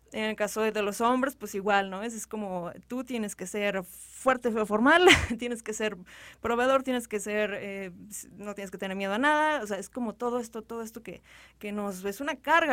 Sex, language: female, Spanish